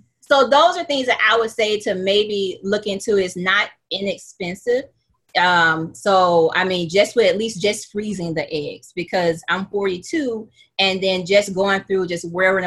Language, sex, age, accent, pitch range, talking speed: English, female, 30-49, American, 165-200 Hz, 175 wpm